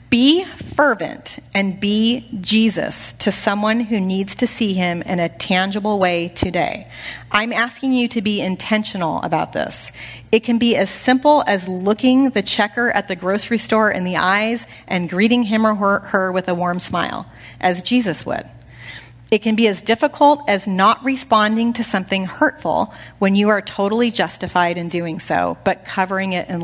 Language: English